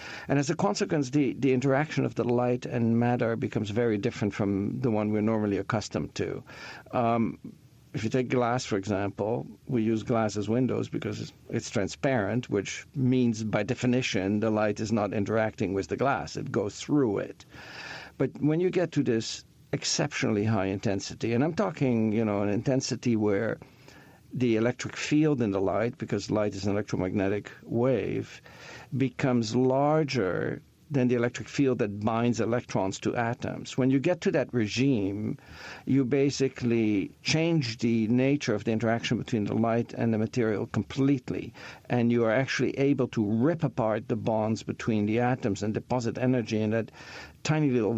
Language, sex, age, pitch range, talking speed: English, male, 50-69, 110-130 Hz, 170 wpm